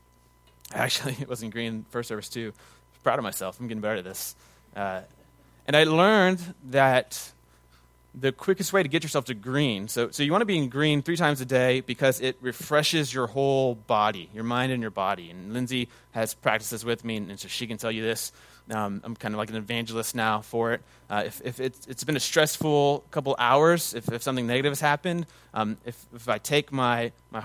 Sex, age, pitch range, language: male, 30-49, 100-130 Hz, English